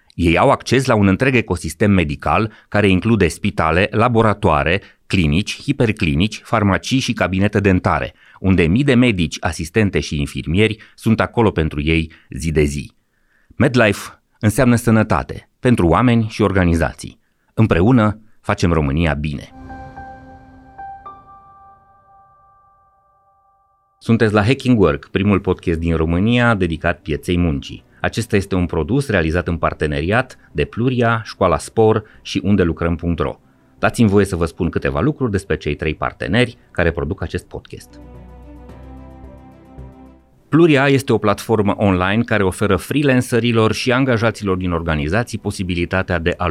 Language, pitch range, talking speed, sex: Romanian, 80-115 Hz, 125 wpm, male